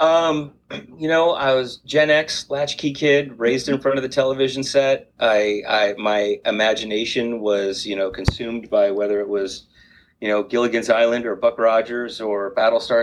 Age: 30-49